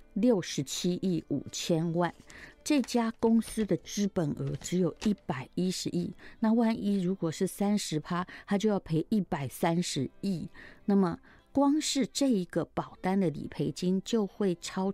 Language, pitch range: Chinese, 150-200 Hz